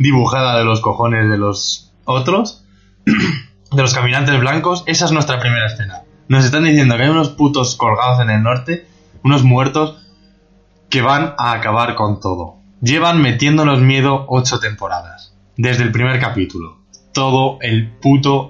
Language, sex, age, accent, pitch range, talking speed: Spanish, male, 20-39, Spanish, 115-150 Hz, 150 wpm